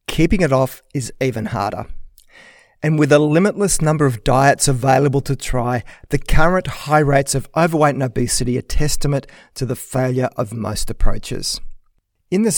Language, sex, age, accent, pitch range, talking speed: English, male, 40-59, Australian, 125-155 Hz, 160 wpm